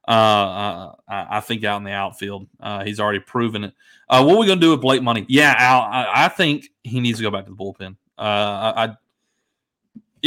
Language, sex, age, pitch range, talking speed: English, male, 30-49, 110-130 Hz, 230 wpm